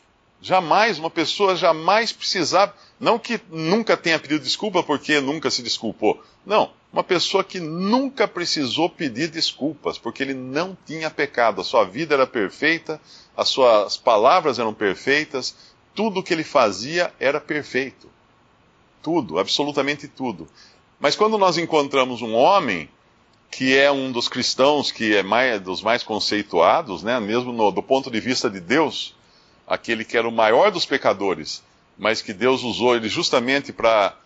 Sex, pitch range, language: male, 115-155 Hz, Portuguese